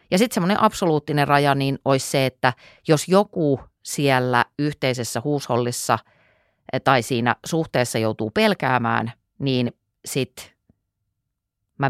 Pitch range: 120-165 Hz